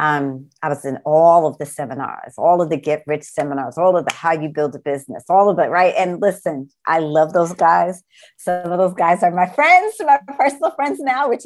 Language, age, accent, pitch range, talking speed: English, 50-69, American, 135-165 Hz, 230 wpm